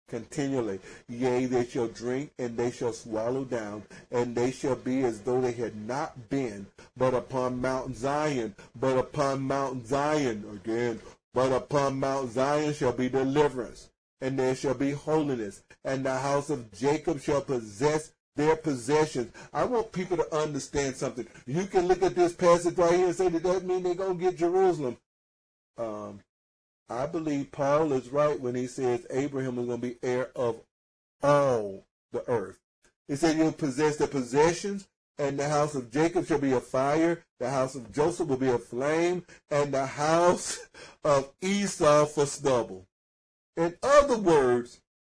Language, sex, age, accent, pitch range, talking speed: English, male, 40-59, American, 120-155 Hz, 170 wpm